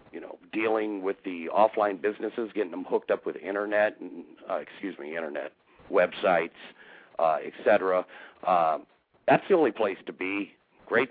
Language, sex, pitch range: English, male, 90-150 Hz